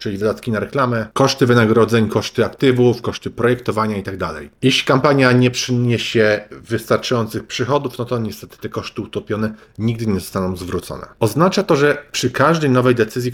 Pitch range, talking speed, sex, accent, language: 115-130 Hz, 160 wpm, male, native, Polish